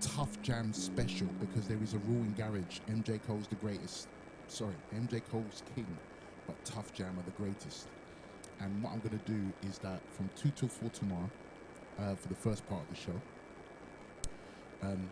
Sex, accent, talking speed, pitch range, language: male, British, 180 wpm, 100-130 Hz, English